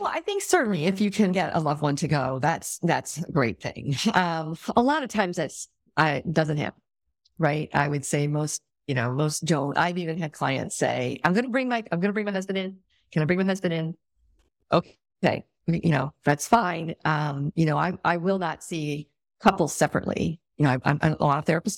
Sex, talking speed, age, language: female, 225 wpm, 50-69, English